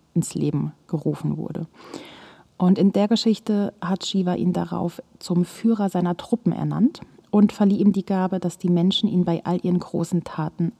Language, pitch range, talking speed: German, 170-205 Hz, 170 wpm